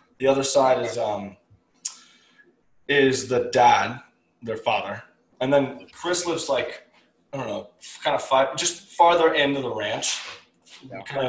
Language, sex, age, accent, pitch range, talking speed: English, male, 20-39, American, 110-135 Hz, 145 wpm